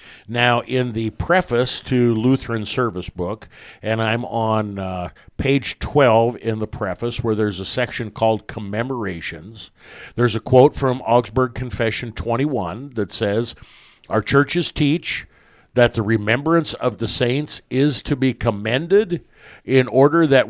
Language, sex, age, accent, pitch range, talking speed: English, male, 50-69, American, 110-130 Hz, 140 wpm